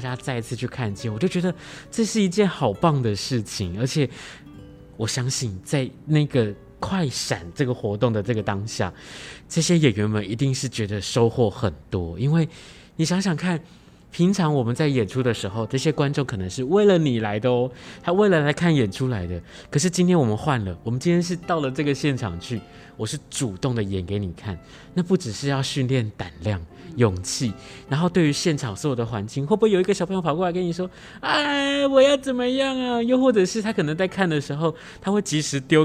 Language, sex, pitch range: Chinese, male, 110-165 Hz